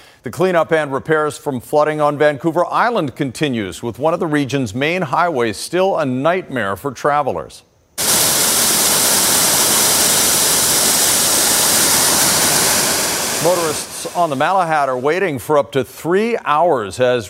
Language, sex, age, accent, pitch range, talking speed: English, male, 50-69, American, 120-155 Hz, 120 wpm